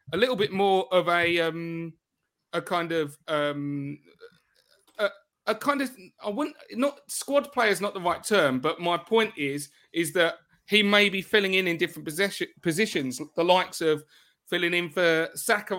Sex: male